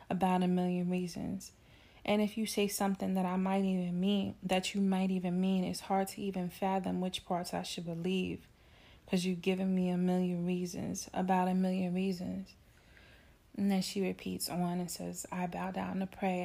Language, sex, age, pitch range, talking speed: English, female, 30-49, 180-200 Hz, 190 wpm